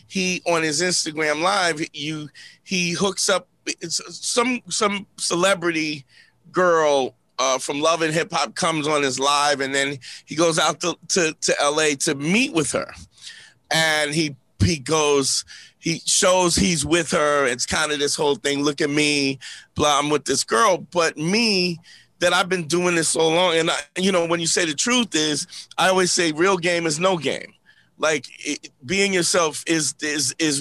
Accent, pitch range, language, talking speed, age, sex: American, 150-180 Hz, English, 175 wpm, 30-49, male